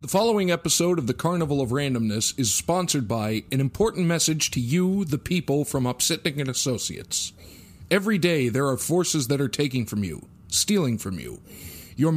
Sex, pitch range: male, 140-180 Hz